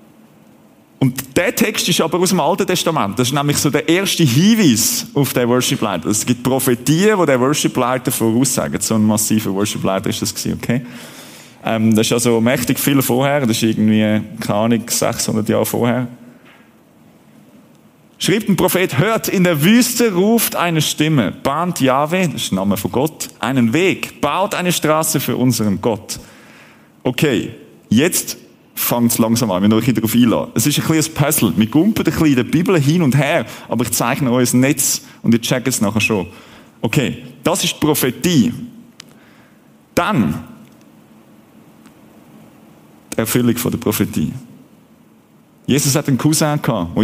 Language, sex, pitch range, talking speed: German, male, 120-160 Hz, 160 wpm